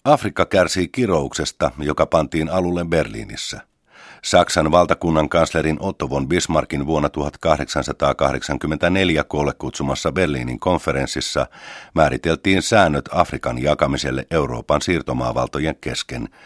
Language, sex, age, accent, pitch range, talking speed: Finnish, male, 50-69, native, 75-90 Hz, 95 wpm